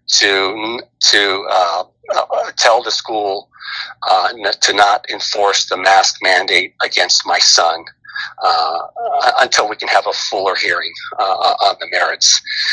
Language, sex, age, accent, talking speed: English, male, 40-59, American, 145 wpm